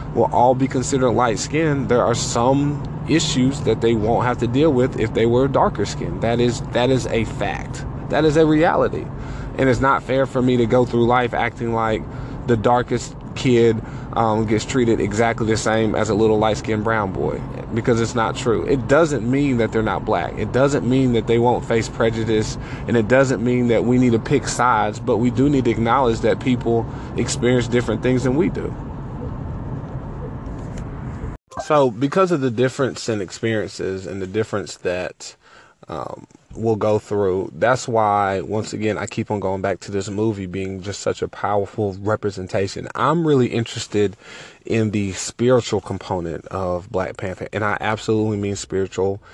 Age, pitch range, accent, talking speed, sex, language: 20-39, 105-125 Hz, American, 180 wpm, male, English